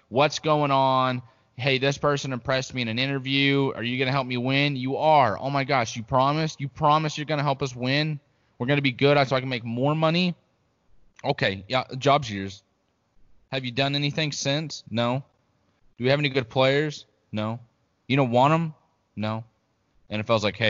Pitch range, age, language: 105-135 Hz, 20-39, English